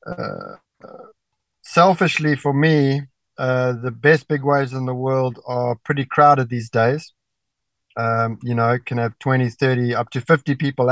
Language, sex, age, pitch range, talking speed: English, male, 20-39, 120-135 Hz, 155 wpm